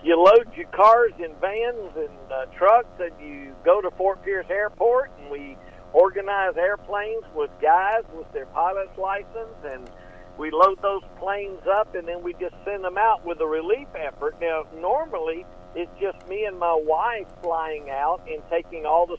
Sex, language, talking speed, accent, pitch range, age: male, English, 180 wpm, American, 165-245 Hz, 50-69